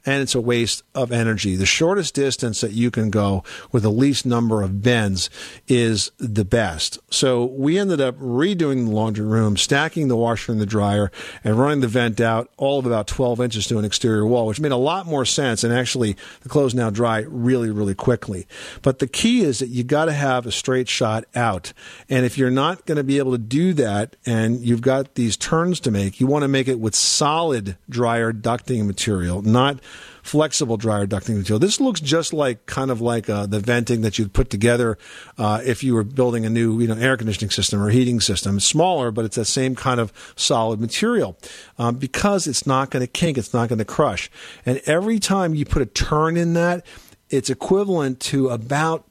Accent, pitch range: American, 110-140 Hz